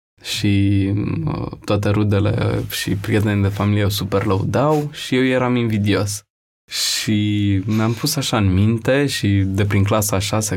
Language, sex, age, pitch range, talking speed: Romanian, male, 20-39, 100-125 Hz, 140 wpm